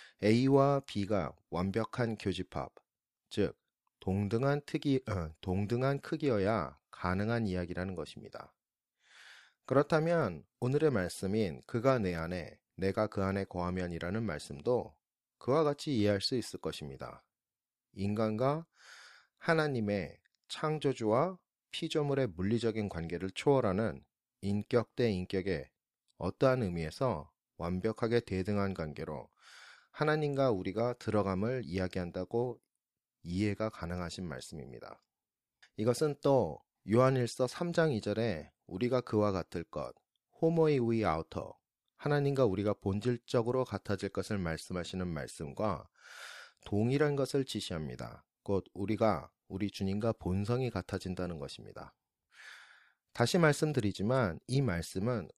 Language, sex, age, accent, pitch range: Korean, male, 30-49, native, 95-130 Hz